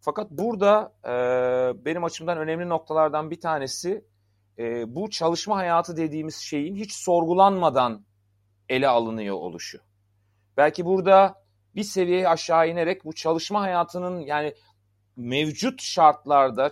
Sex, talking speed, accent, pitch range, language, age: male, 115 wpm, native, 120-165 Hz, Turkish, 40-59